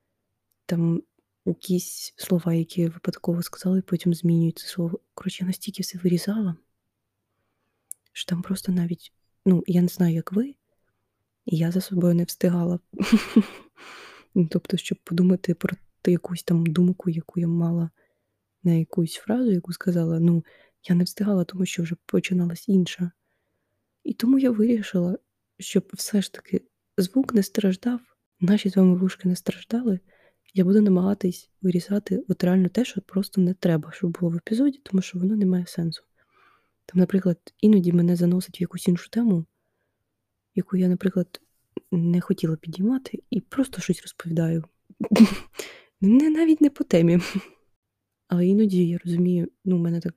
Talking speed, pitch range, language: 150 wpm, 170-195 Hz, Ukrainian